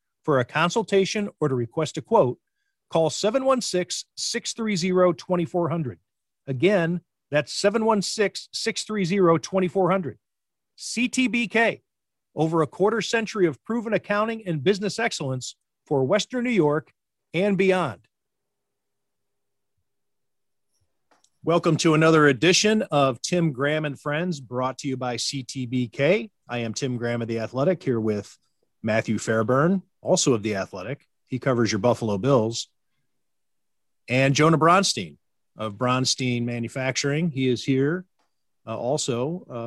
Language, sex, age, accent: English, male, 40-59, American